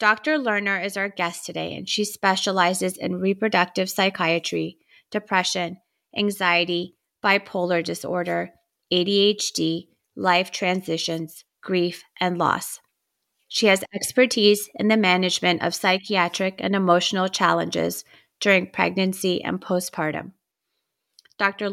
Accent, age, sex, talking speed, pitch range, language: American, 30-49, female, 105 wpm, 175-205 Hz, English